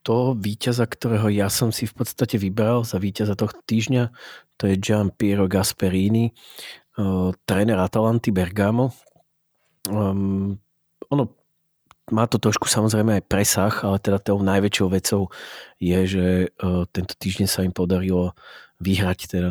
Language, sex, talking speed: Slovak, male, 140 wpm